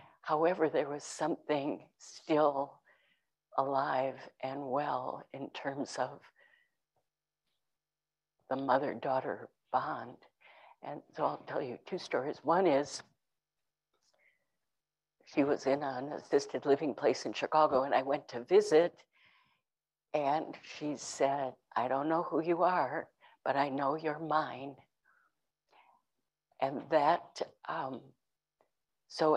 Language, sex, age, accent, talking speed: English, female, 60-79, American, 110 wpm